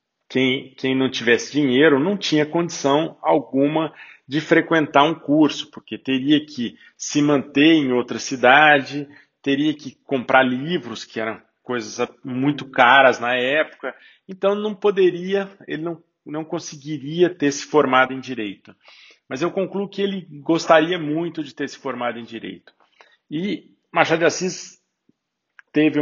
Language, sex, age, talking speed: Portuguese, male, 40-59, 145 wpm